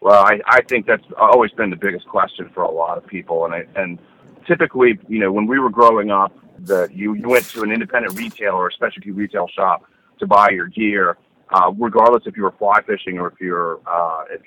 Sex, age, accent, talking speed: male, 40-59, American, 225 wpm